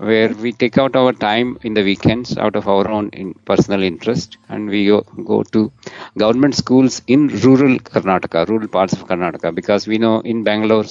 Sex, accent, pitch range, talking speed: male, Indian, 105-130 Hz, 185 wpm